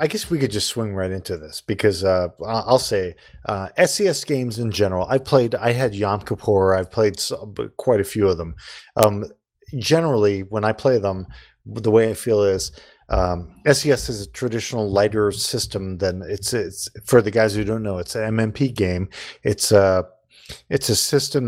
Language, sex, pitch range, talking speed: English, male, 95-115 Hz, 185 wpm